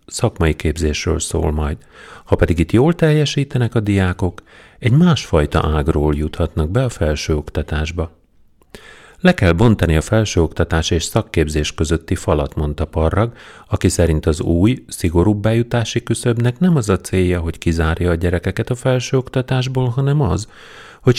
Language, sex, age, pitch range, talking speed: Hungarian, male, 40-59, 85-115 Hz, 140 wpm